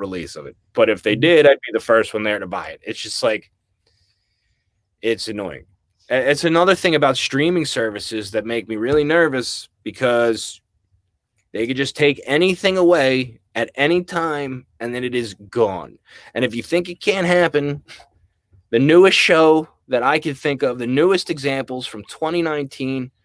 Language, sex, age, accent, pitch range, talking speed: English, male, 20-39, American, 115-180 Hz, 175 wpm